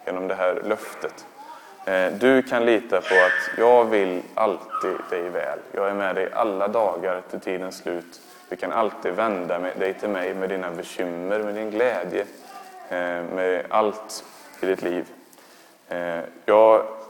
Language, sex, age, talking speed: Swedish, male, 20-39, 145 wpm